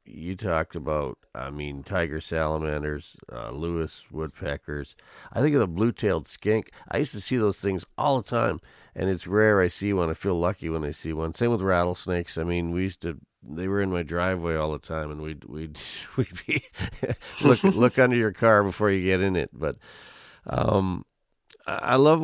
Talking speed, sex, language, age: 200 wpm, male, English, 40-59